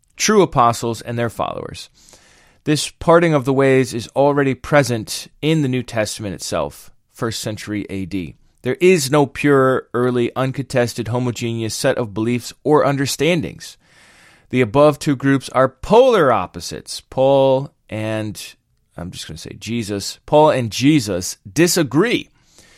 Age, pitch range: 30-49, 115-145 Hz